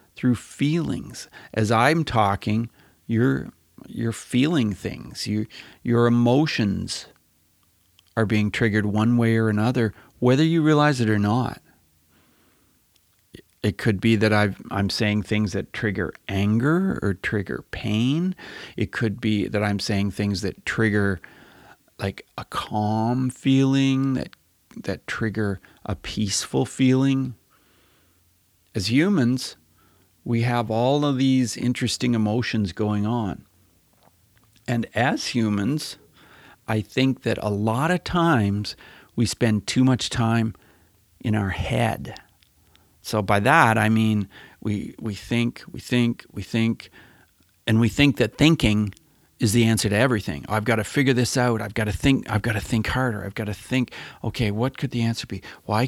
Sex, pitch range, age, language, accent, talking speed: male, 105-125 Hz, 40-59, English, American, 145 wpm